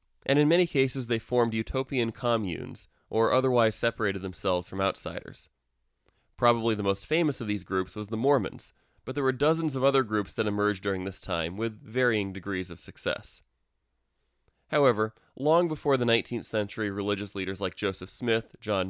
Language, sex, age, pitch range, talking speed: English, male, 20-39, 100-130 Hz, 170 wpm